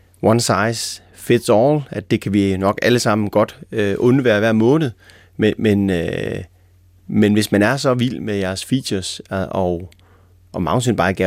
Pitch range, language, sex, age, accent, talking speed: 95-115 Hz, Danish, male, 30-49, native, 165 wpm